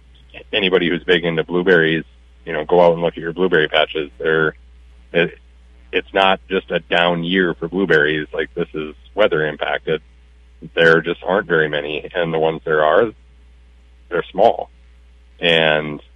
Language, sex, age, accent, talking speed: English, male, 40-59, American, 155 wpm